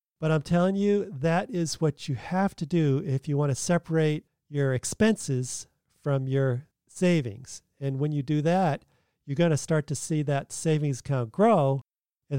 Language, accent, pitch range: English, American, 135-175 Hz